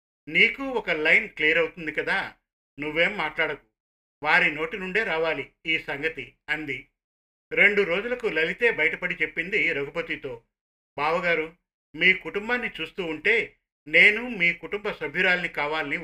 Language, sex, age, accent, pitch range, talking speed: Telugu, male, 50-69, native, 145-205 Hz, 115 wpm